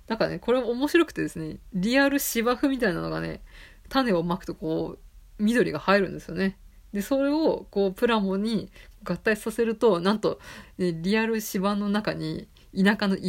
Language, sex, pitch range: Japanese, female, 170-230 Hz